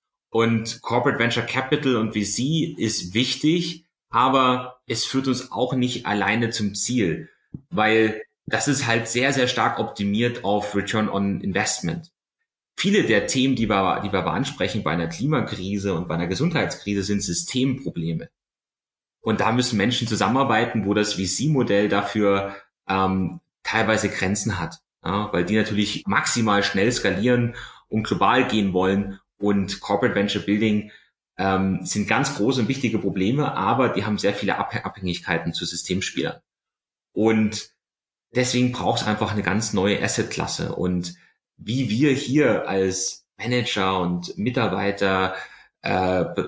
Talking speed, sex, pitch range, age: 140 wpm, male, 95-120 Hz, 30-49